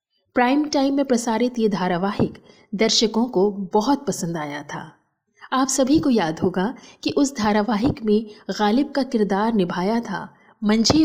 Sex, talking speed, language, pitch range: female, 145 wpm, Hindi, 195-255 Hz